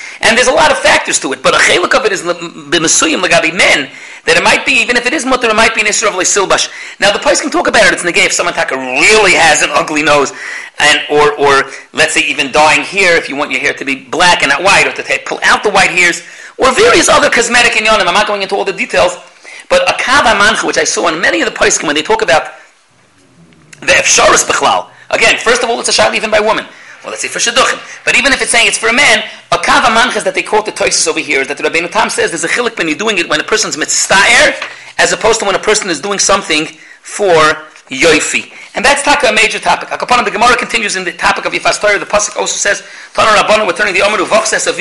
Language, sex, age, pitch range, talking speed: English, male, 40-59, 175-225 Hz, 270 wpm